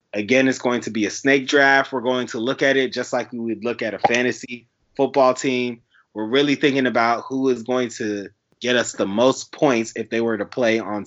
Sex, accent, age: male, American, 20-39